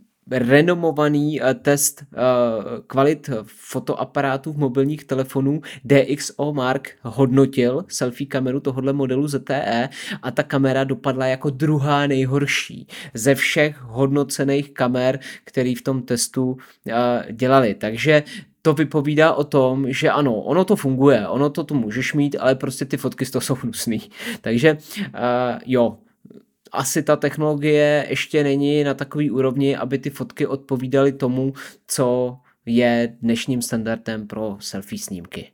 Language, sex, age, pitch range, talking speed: Czech, male, 20-39, 125-140 Hz, 125 wpm